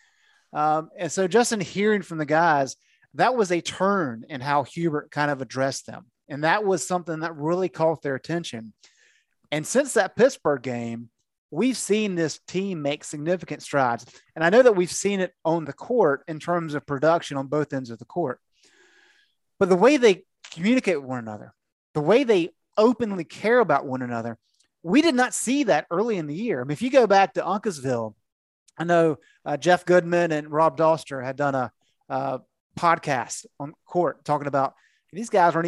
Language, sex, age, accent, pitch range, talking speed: English, male, 30-49, American, 140-190 Hz, 195 wpm